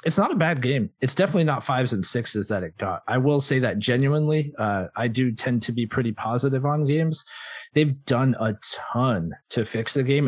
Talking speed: 215 wpm